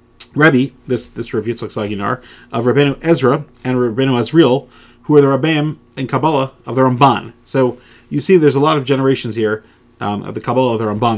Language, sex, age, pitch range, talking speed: English, male, 30-49, 115-140 Hz, 200 wpm